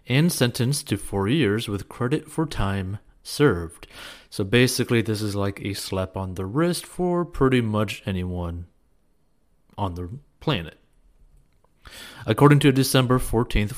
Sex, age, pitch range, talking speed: male, 30-49, 100-130 Hz, 140 wpm